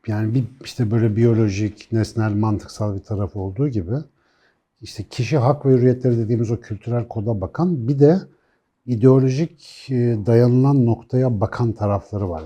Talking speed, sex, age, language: 140 wpm, male, 60-79, Turkish